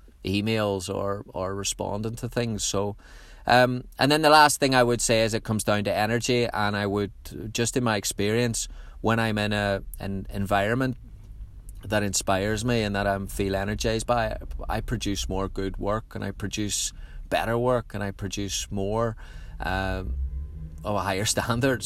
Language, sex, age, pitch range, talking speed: English, male, 30-49, 95-110 Hz, 175 wpm